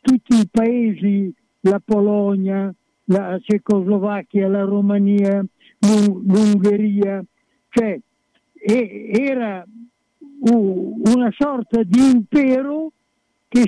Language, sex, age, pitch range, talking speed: Italian, male, 60-79, 185-240 Hz, 75 wpm